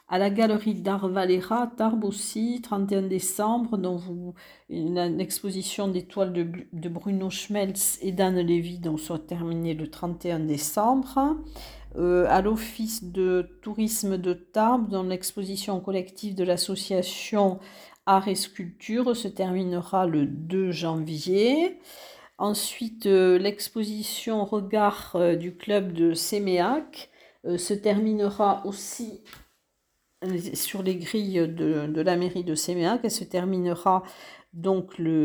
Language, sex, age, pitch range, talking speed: French, female, 50-69, 180-215 Hz, 125 wpm